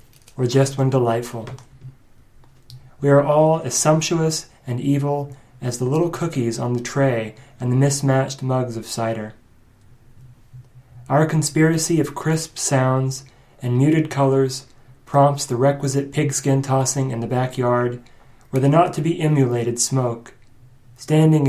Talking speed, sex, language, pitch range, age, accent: 125 wpm, male, English, 120-140 Hz, 30-49, American